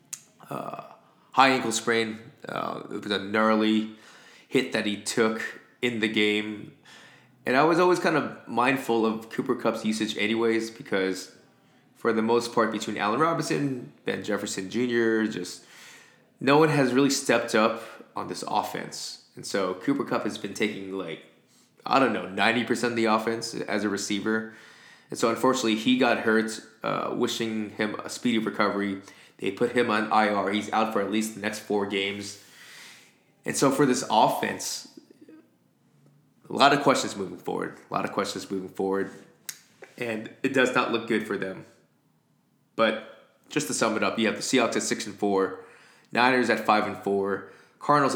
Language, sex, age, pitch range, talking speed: English, male, 20-39, 100-120 Hz, 170 wpm